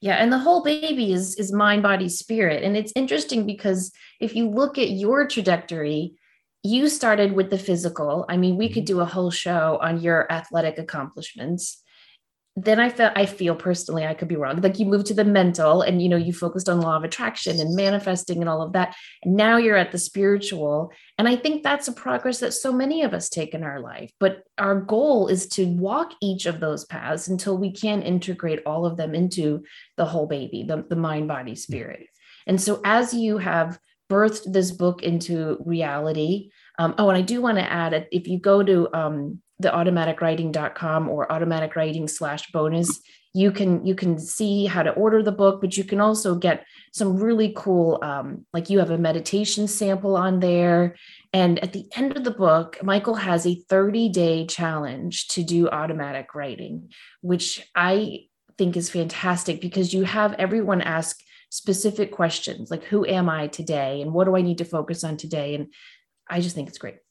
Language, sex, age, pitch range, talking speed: English, female, 30-49, 165-205 Hz, 195 wpm